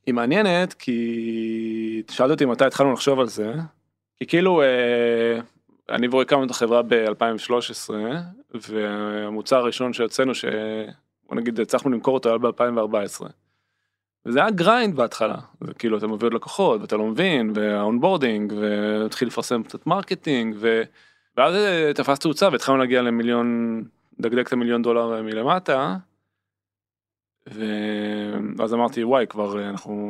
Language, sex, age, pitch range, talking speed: Hebrew, male, 20-39, 105-130 Hz, 130 wpm